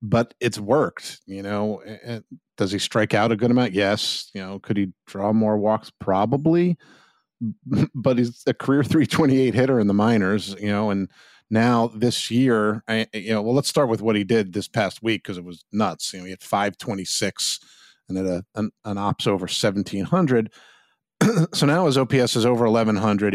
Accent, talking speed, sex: American, 190 wpm, male